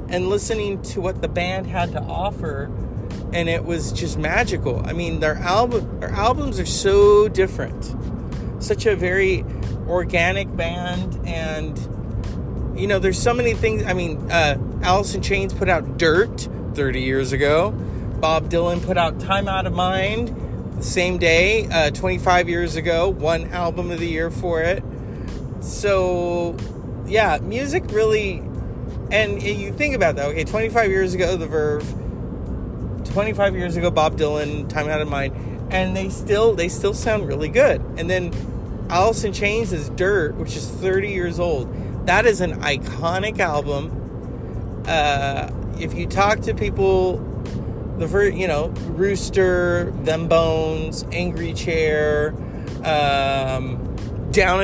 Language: English